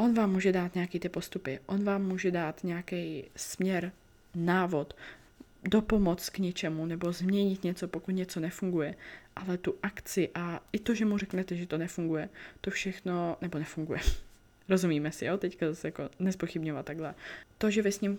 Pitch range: 170-190 Hz